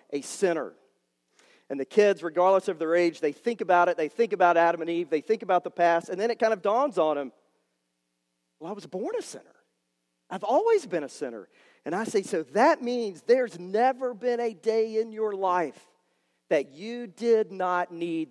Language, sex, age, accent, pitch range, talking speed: English, male, 40-59, American, 155-215 Hz, 205 wpm